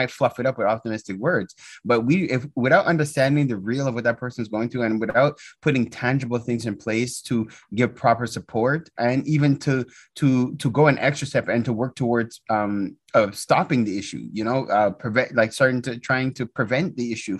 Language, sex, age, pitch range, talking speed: English, male, 20-39, 115-140 Hz, 210 wpm